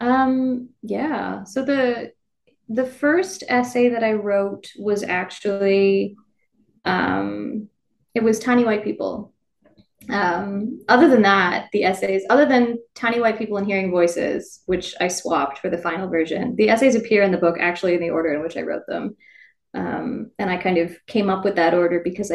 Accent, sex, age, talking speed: American, female, 20-39, 175 wpm